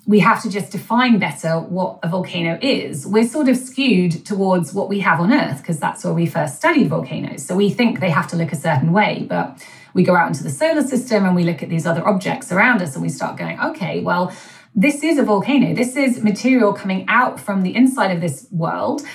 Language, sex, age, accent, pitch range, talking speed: English, female, 30-49, British, 170-230 Hz, 235 wpm